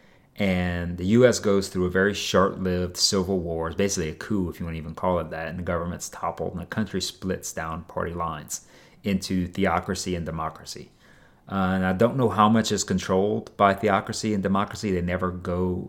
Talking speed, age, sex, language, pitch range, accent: 195 wpm, 30-49, male, English, 90-100 Hz, American